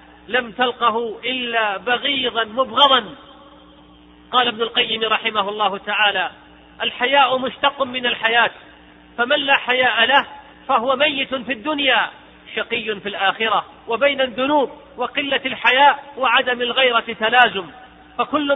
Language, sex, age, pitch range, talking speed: Arabic, male, 40-59, 225-270 Hz, 110 wpm